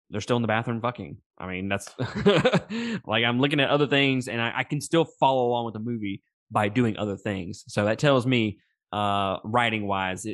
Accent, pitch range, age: American, 105-135 Hz, 20-39